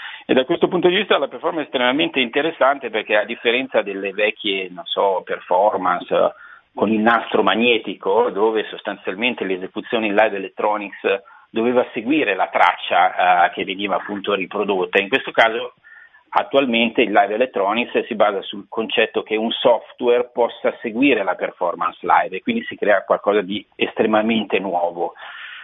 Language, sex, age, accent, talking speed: Italian, male, 40-59, native, 150 wpm